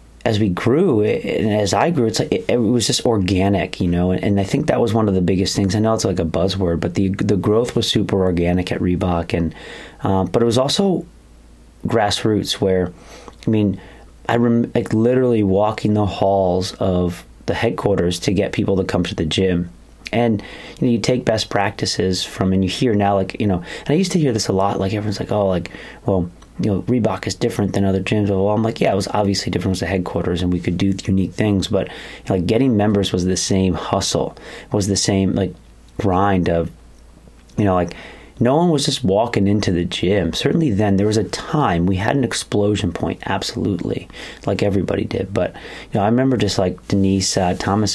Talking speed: 220 wpm